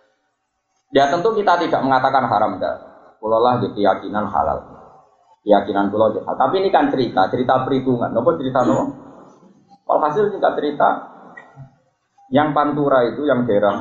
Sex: male